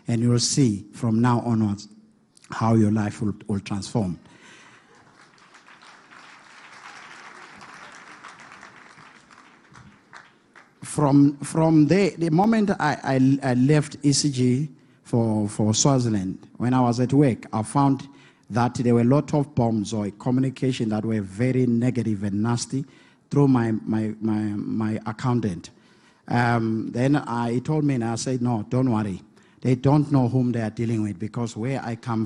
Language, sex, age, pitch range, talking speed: English, male, 50-69, 115-150 Hz, 145 wpm